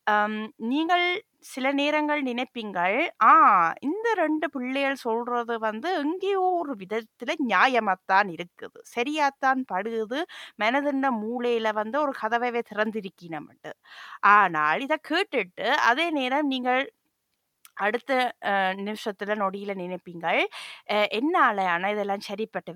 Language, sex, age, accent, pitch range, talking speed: Tamil, female, 20-39, native, 200-265 Hz, 100 wpm